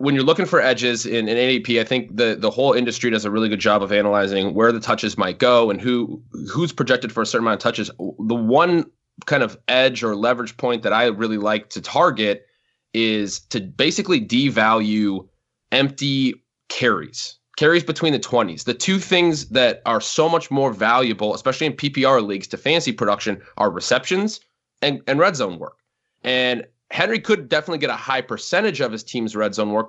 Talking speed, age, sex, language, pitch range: 195 wpm, 20-39, male, English, 110-135 Hz